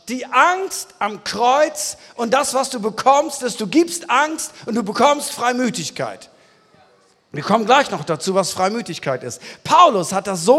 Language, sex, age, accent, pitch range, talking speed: German, male, 40-59, German, 205-265 Hz, 165 wpm